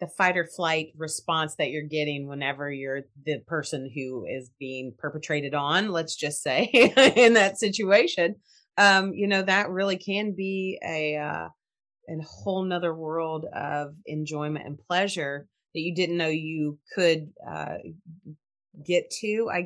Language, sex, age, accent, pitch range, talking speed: English, female, 30-49, American, 150-190 Hz, 155 wpm